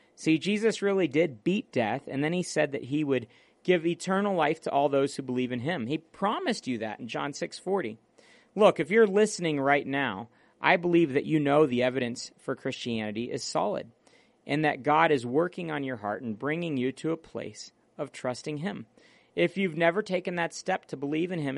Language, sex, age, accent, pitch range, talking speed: English, male, 40-59, American, 135-175 Hz, 210 wpm